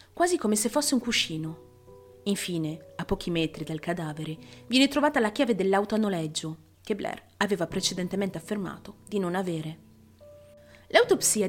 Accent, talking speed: native, 145 wpm